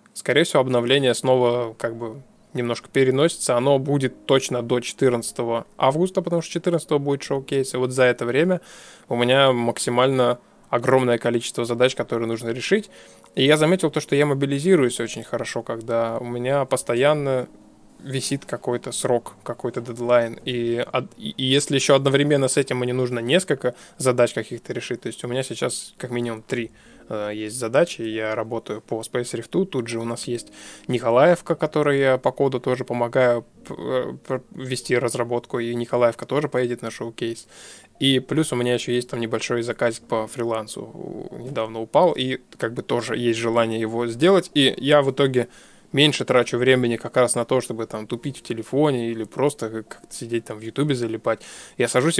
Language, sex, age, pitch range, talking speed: Russian, male, 20-39, 120-140 Hz, 165 wpm